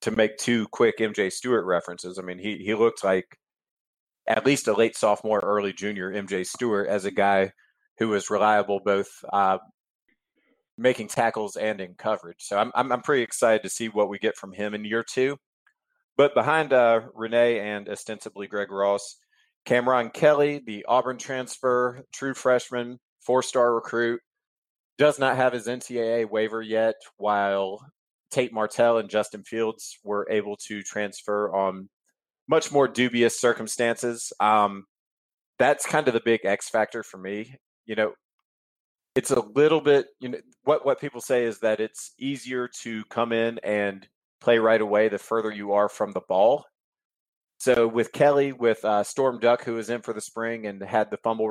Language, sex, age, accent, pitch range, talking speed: English, male, 30-49, American, 105-125 Hz, 170 wpm